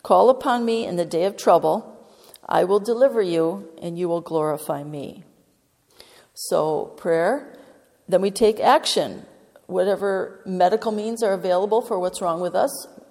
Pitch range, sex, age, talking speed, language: 180-235 Hz, female, 40-59, 150 wpm, English